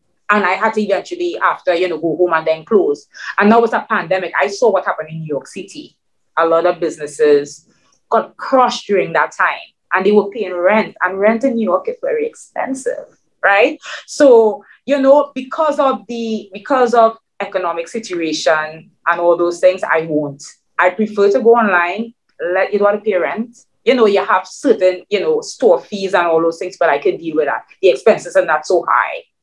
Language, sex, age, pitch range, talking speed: English, female, 30-49, 185-250 Hz, 210 wpm